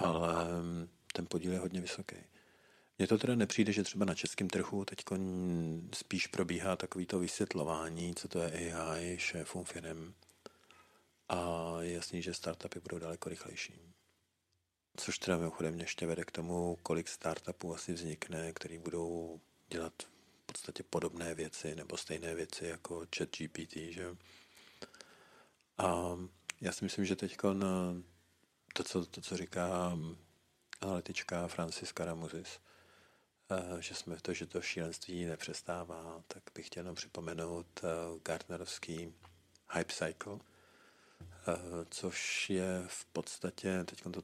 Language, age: Czech, 50-69